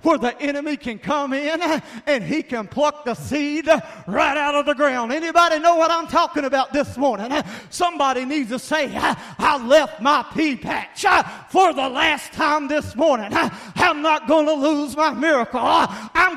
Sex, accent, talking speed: male, American, 175 wpm